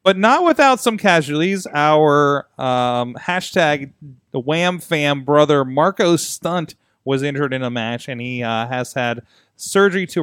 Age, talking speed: 30-49, 140 wpm